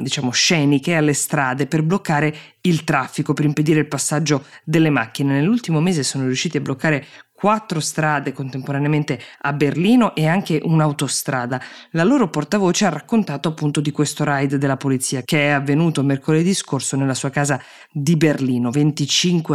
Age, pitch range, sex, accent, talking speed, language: 20-39, 135-160 Hz, female, native, 155 wpm, Italian